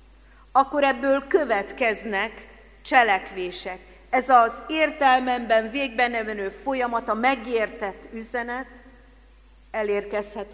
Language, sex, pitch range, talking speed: Hungarian, female, 195-245 Hz, 80 wpm